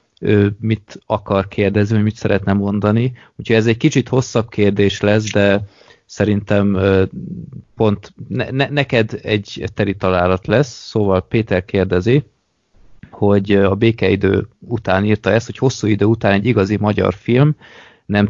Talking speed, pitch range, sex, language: 130 wpm, 95-115 Hz, male, Hungarian